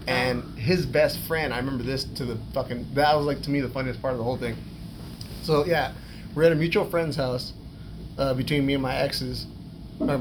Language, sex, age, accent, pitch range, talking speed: English, male, 30-49, American, 125-150 Hz, 215 wpm